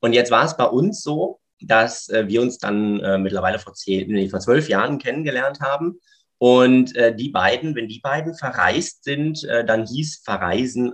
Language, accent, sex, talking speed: German, German, male, 180 wpm